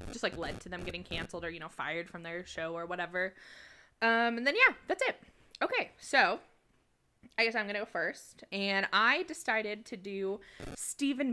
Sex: female